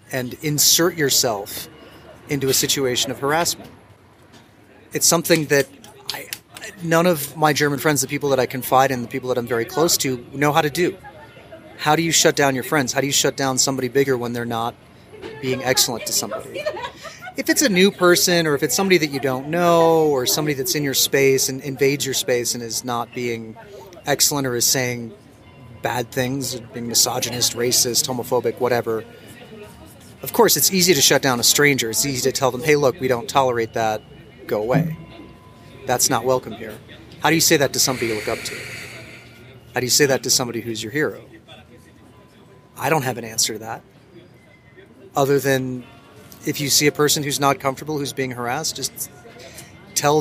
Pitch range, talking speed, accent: 125-145 Hz, 190 wpm, American